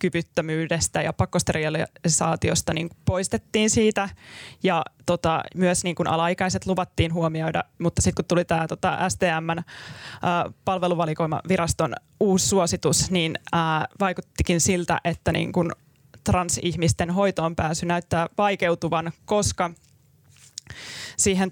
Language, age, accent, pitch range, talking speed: Finnish, 20-39, native, 165-180 Hz, 100 wpm